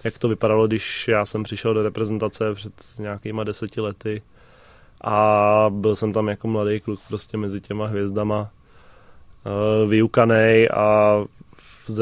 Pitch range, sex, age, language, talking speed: 100-110 Hz, male, 20-39, Czech, 135 wpm